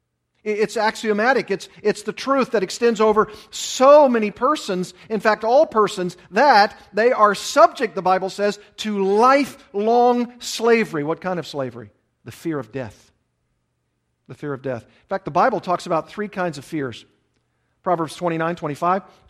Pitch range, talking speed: 145-195 Hz, 160 wpm